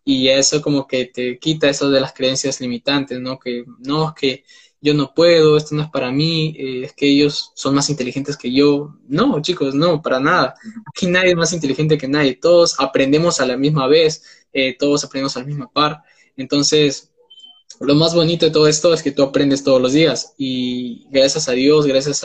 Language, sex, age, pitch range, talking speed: Spanish, male, 10-29, 130-155 Hz, 205 wpm